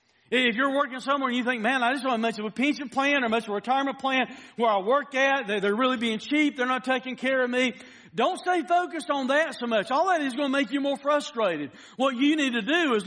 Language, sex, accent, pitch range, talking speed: English, male, American, 215-275 Hz, 260 wpm